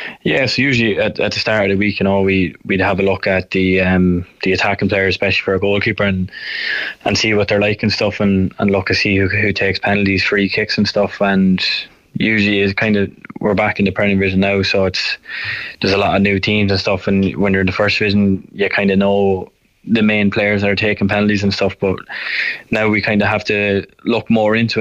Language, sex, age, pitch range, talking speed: English, male, 20-39, 95-100 Hz, 250 wpm